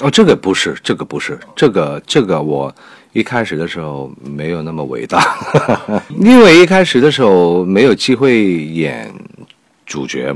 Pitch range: 85-120 Hz